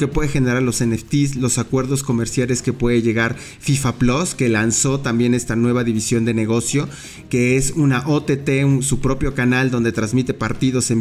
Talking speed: 175 wpm